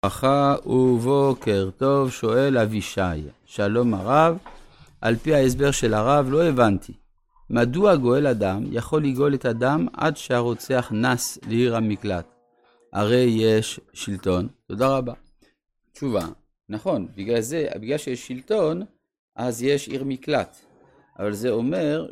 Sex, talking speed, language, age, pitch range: male, 120 wpm, Hebrew, 50-69, 105-140 Hz